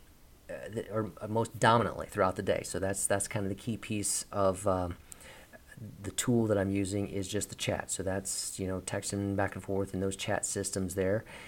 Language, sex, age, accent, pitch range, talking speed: English, male, 40-59, American, 95-105 Hz, 200 wpm